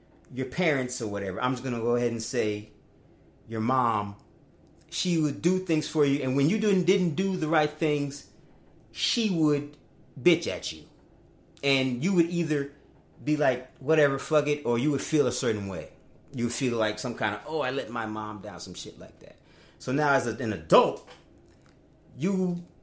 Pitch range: 130-180 Hz